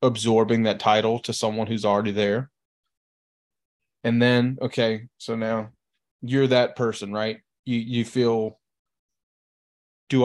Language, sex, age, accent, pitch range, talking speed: English, male, 20-39, American, 105-120 Hz, 125 wpm